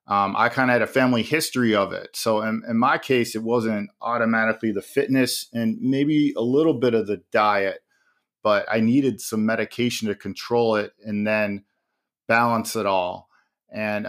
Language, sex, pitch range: English, male, 105-120 Hz